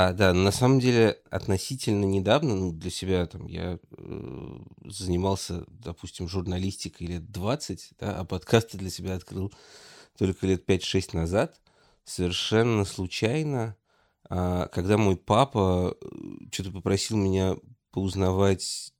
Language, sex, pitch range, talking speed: Russian, male, 85-100 Hz, 115 wpm